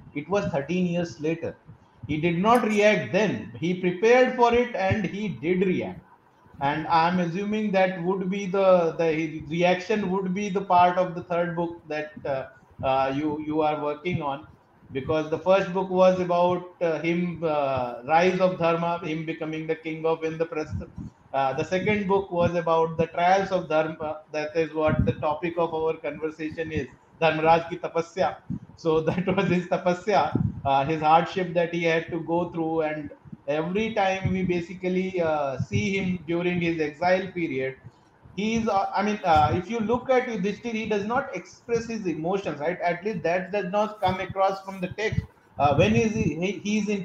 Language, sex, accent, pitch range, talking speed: Hindi, male, native, 160-195 Hz, 190 wpm